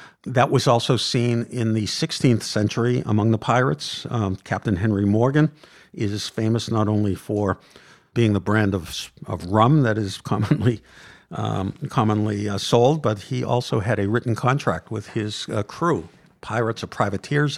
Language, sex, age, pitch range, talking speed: English, male, 50-69, 105-125 Hz, 155 wpm